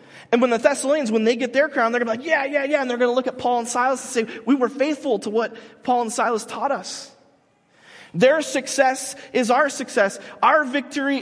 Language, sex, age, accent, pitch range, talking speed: English, male, 30-49, American, 220-280 Hz, 240 wpm